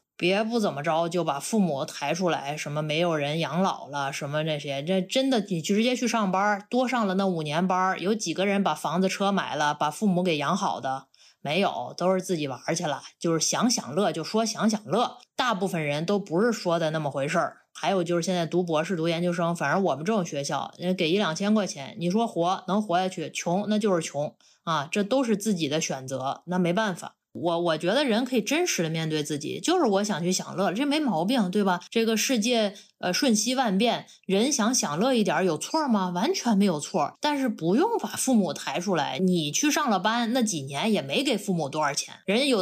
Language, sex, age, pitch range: Chinese, female, 20-39, 170-215 Hz